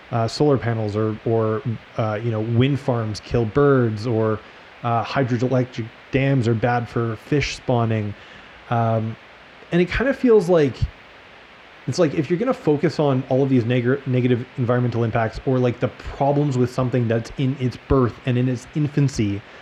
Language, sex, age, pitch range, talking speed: English, male, 20-39, 115-145 Hz, 170 wpm